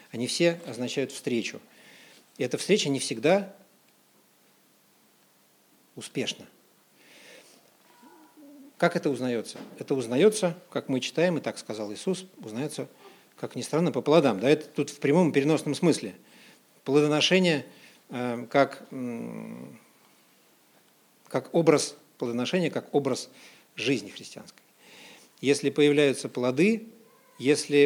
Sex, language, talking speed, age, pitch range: male, Russian, 105 wpm, 50-69, 125-170 Hz